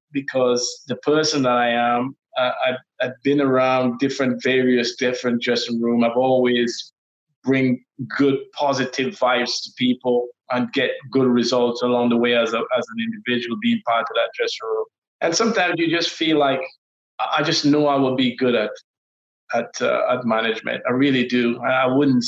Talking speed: 175 wpm